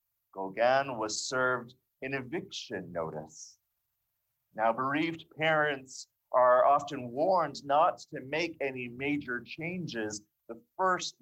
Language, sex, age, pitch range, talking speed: English, male, 30-49, 115-160 Hz, 105 wpm